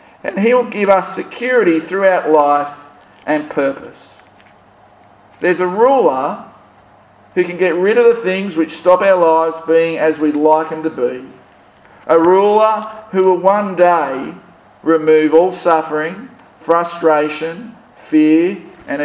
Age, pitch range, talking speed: 50-69, 135-180 Hz, 130 wpm